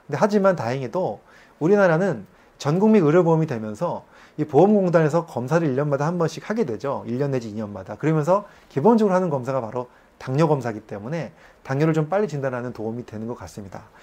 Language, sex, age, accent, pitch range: Korean, male, 30-49, native, 125-190 Hz